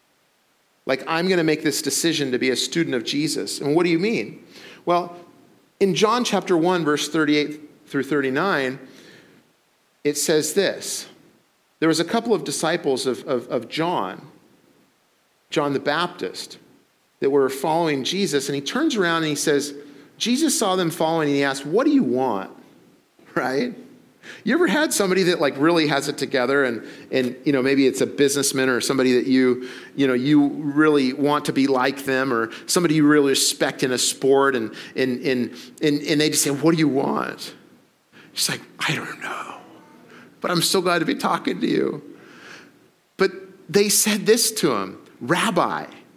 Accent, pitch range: American, 135-175 Hz